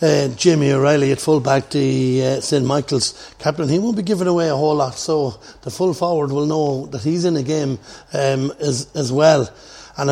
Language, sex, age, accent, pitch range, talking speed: English, male, 60-79, Irish, 130-150 Hz, 200 wpm